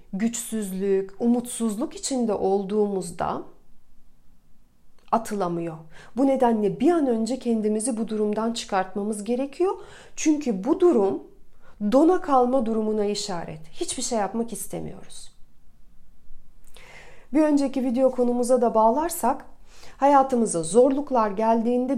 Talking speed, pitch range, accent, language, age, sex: 95 wpm, 210-275 Hz, native, Turkish, 40-59, female